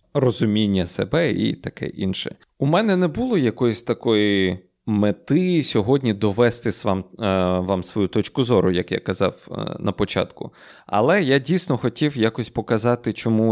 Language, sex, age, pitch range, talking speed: Ukrainian, male, 20-39, 95-120 Hz, 140 wpm